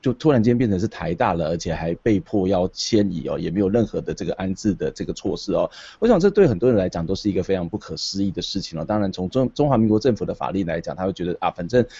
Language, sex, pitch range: Chinese, male, 90-120 Hz